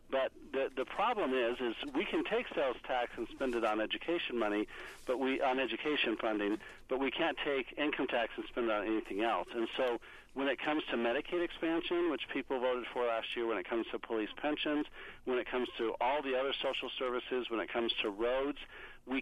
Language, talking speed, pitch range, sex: English, 215 wpm, 120-150 Hz, male